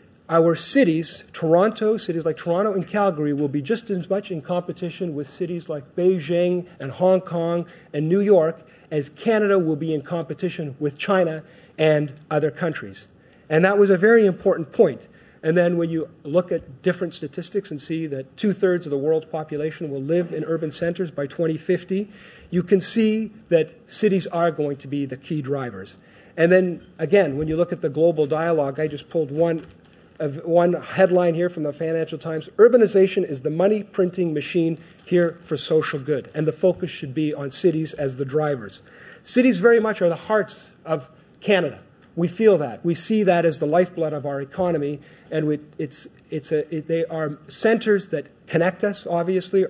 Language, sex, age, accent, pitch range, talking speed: English, male, 40-59, American, 155-185 Hz, 185 wpm